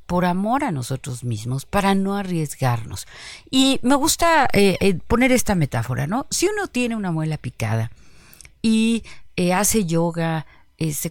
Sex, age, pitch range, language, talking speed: female, 40-59, 160-225 Hz, Spanish, 155 wpm